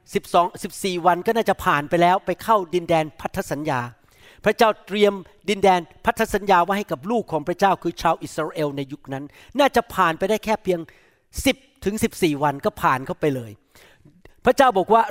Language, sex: Thai, male